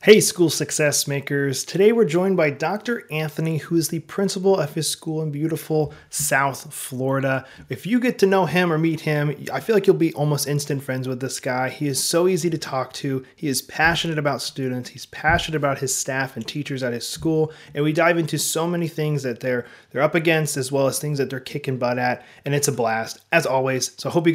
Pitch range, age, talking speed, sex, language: 145-195 Hz, 30-49, 230 wpm, male, English